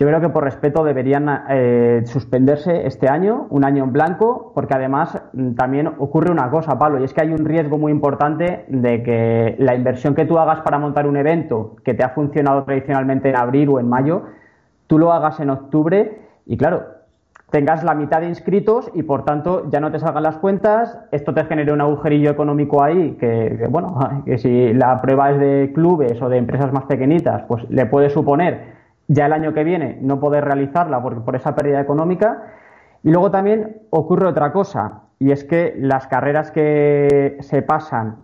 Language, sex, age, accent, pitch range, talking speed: Spanish, male, 20-39, Spanish, 135-160 Hz, 195 wpm